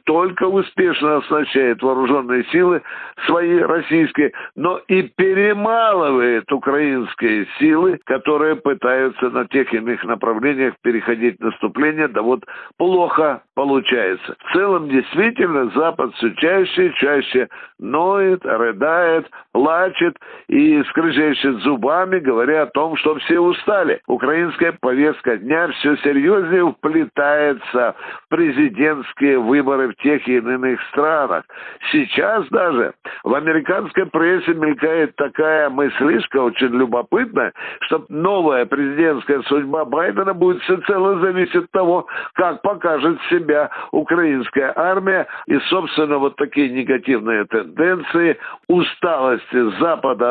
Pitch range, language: 135-185 Hz, Russian